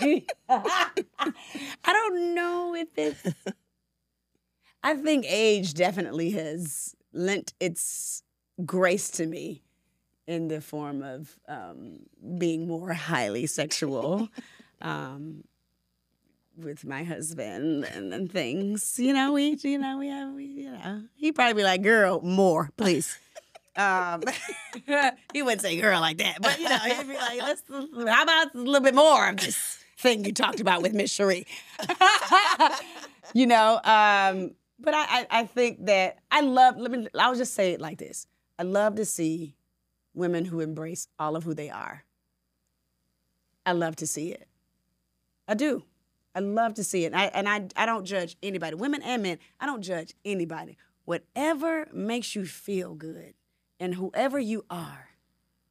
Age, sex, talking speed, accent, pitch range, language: 30-49, female, 155 wpm, American, 160-245 Hz, English